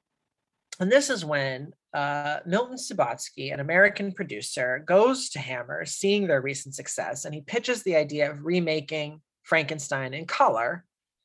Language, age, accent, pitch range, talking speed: English, 30-49, American, 145-180 Hz, 145 wpm